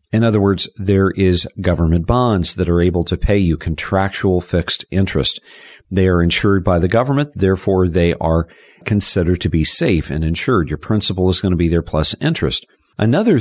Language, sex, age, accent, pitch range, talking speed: English, male, 50-69, American, 85-110 Hz, 185 wpm